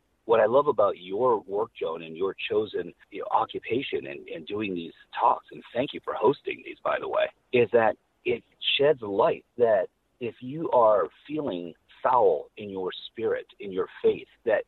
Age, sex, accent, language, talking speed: 40-59, male, American, English, 175 wpm